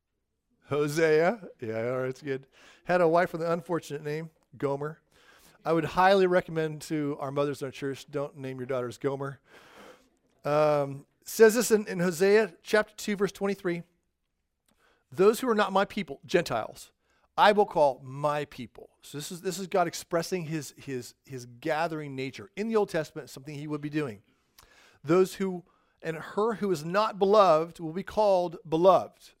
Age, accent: 40-59, American